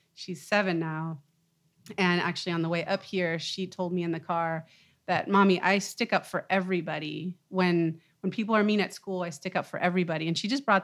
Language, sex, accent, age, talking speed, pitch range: English, female, American, 30-49, 215 wpm, 160-185 Hz